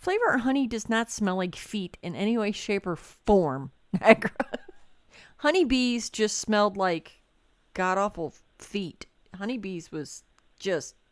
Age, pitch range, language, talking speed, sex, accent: 40-59, 175-235 Hz, English, 125 wpm, female, American